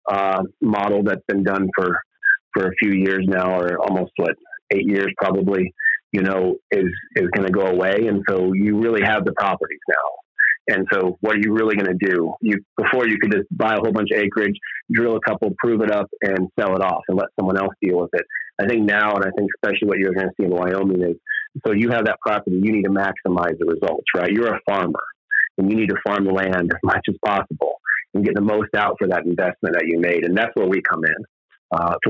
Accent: American